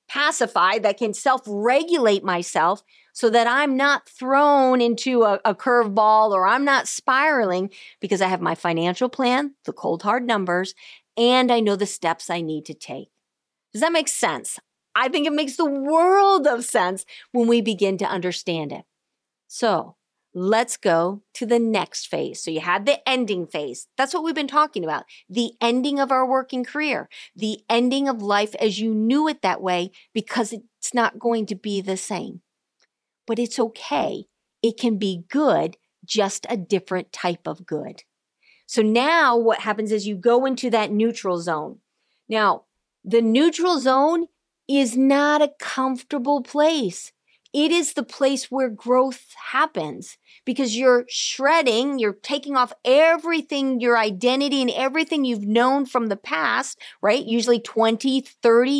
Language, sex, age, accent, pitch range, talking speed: English, female, 40-59, American, 210-275 Hz, 160 wpm